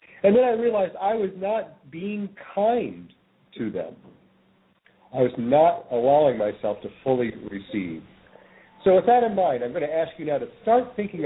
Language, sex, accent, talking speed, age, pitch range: English, male, American, 175 wpm, 50-69, 135-215 Hz